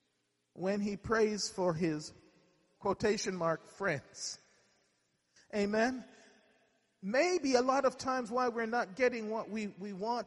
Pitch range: 170-230 Hz